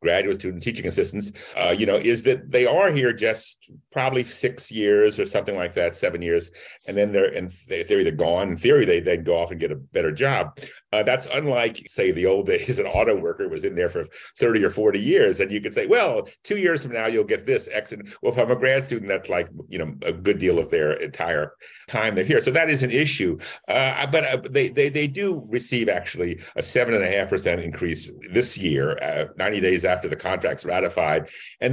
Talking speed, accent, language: 235 wpm, American, English